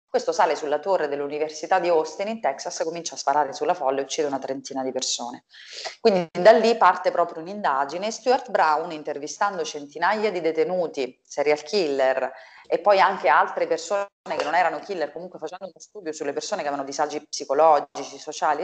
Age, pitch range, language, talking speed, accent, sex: 30-49, 140-185 Hz, Italian, 175 wpm, native, female